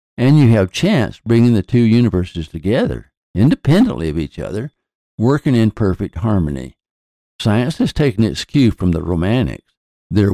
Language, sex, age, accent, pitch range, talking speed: English, male, 60-79, American, 85-120 Hz, 150 wpm